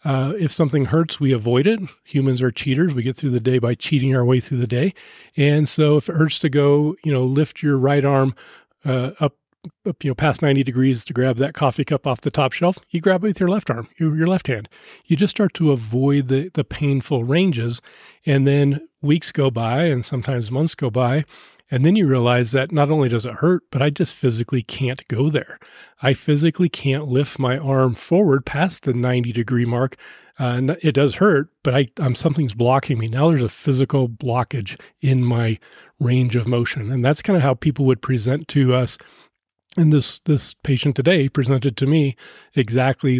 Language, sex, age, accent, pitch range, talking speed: English, male, 40-59, American, 130-155 Hz, 210 wpm